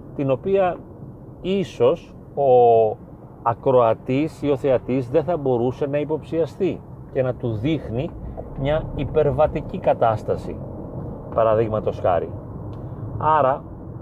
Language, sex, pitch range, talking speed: Greek, male, 120-155 Hz, 100 wpm